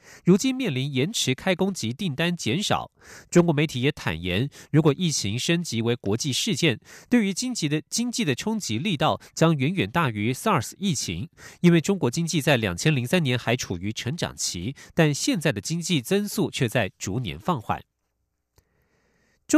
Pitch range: 130-185 Hz